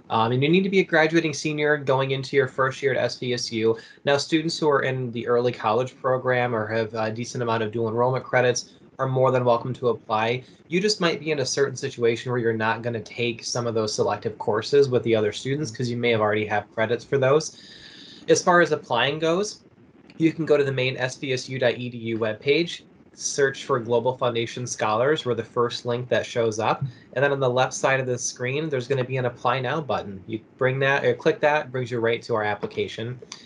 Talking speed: 225 wpm